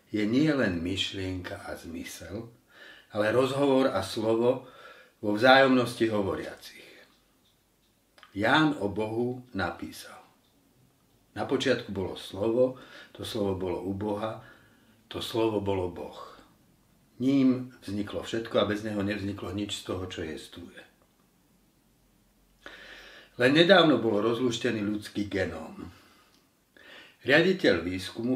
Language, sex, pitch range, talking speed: Slovak, male, 100-125 Hz, 105 wpm